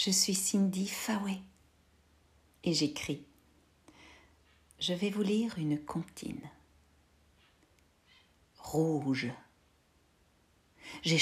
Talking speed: 75 wpm